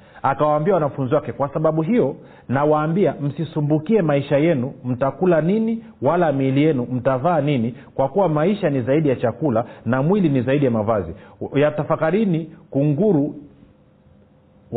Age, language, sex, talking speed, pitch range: 40-59, Swahili, male, 130 wpm, 130-180 Hz